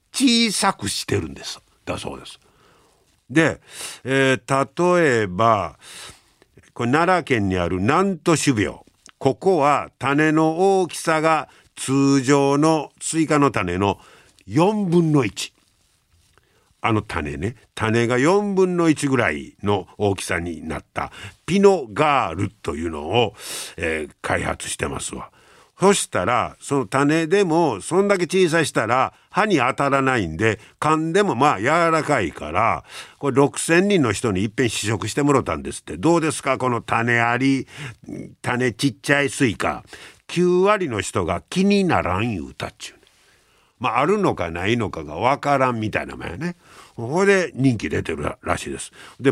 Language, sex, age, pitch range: Japanese, male, 50-69, 110-160 Hz